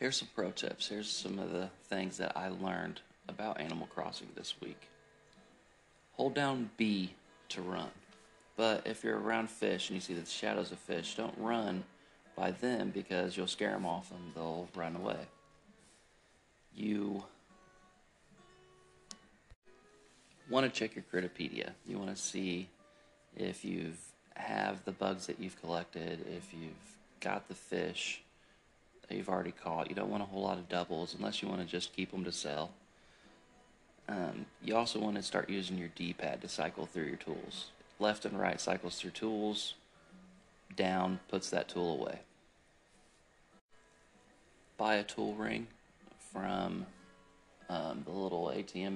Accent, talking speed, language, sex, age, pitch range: American, 150 wpm, English, male, 40-59, 85-105 Hz